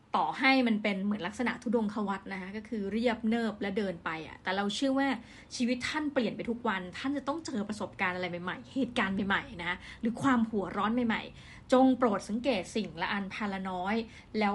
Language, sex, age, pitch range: Thai, female, 20-39, 195-240 Hz